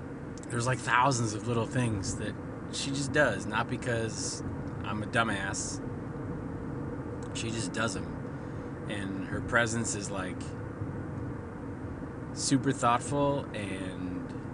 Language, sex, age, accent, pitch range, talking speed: English, male, 30-49, American, 100-130 Hz, 110 wpm